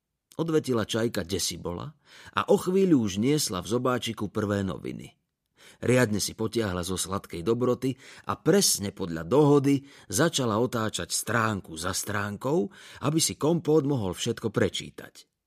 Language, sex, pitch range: Slovak, male, 100-135 Hz